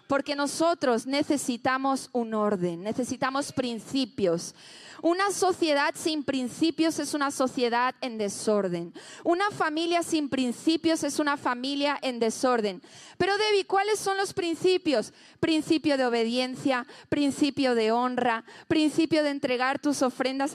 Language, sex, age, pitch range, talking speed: Spanish, female, 30-49, 240-320 Hz, 125 wpm